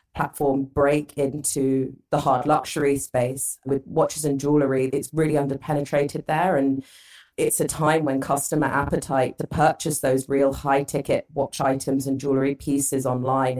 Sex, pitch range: female, 130-145 Hz